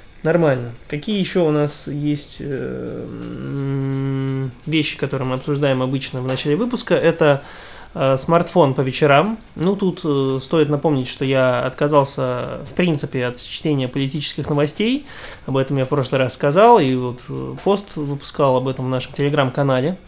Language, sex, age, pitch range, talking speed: Russian, male, 20-39, 135-165 Hz, 140 wpm